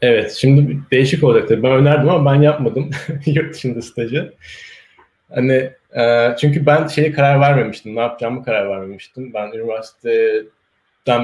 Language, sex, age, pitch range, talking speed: Turkish, male, 30-49, 115-155 Hz, 135 wpm